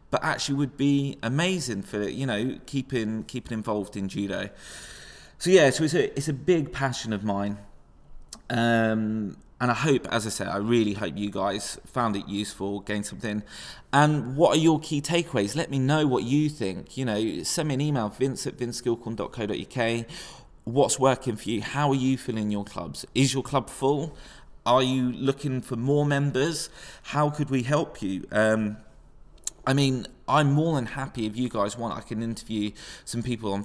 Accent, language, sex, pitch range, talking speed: British, English, male, 105-135 Hz, 185 wpm